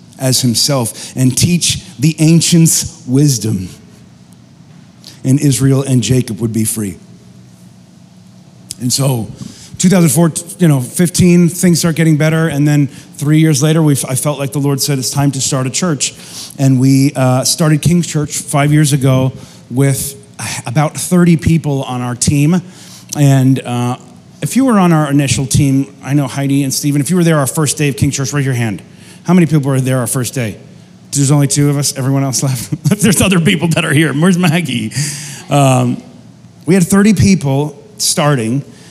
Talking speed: 175 wpm